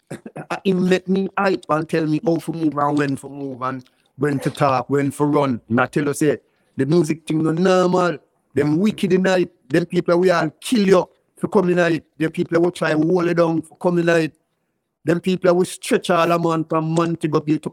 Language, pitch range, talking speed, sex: English, 140-175 Hz, 225 wpm, male